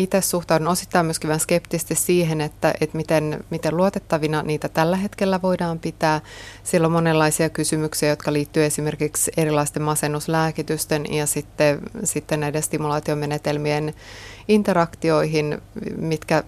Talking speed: 120 wpm